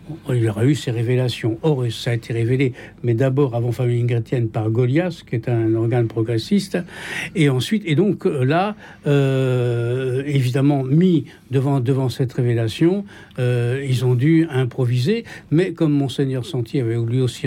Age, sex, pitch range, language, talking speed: 60-79, male, 120-155 Hz, French, 160 wpm